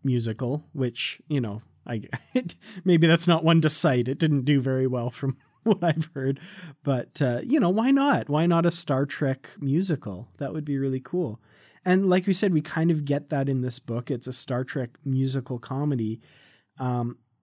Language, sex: English, male